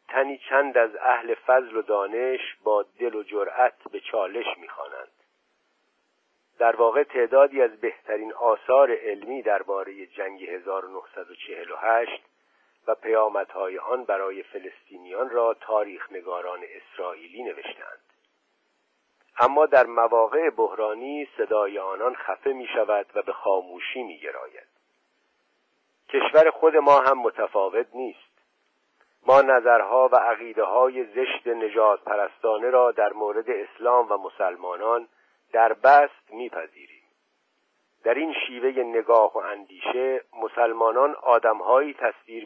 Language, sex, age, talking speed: Persian, male, 50-69, 115 wpm